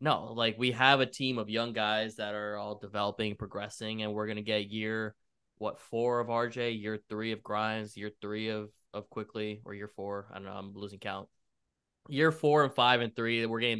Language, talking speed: English, 220 wpm